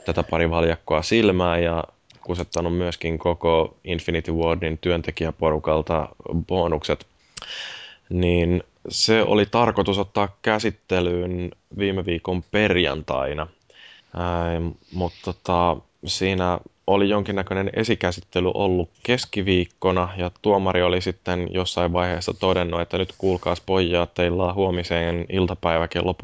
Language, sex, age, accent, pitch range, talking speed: Finnish, male, 20-39, native, 80-95 Hz, 105 wpm